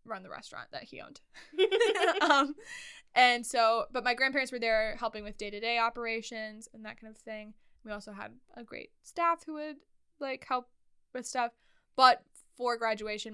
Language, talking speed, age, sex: English, 170 wpm, 10-29, female